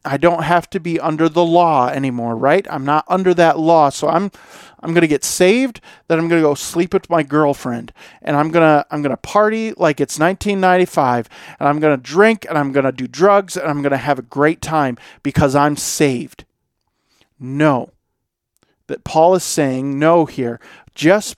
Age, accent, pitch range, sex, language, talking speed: 40-59, American, 140-180 Hz, male, English, 180 wpm